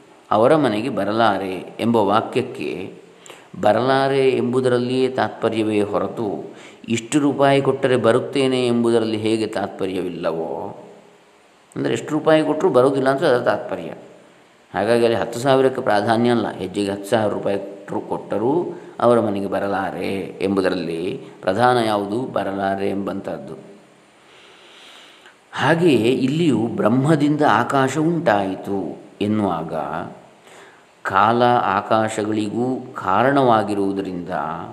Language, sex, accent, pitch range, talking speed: Kannada, male, native, 100-125 Hz, 90 wpm